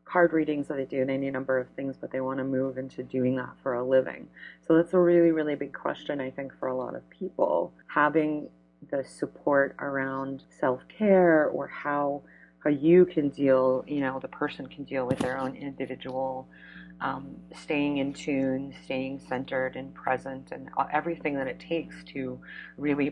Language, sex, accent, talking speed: English, female, American, 185 wpm